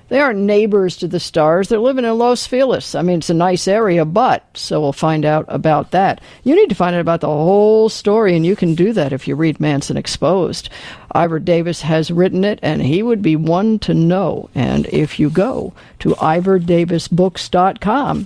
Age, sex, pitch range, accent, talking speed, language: 50-69, female, 160-195 Hz, American, 200 wpm, English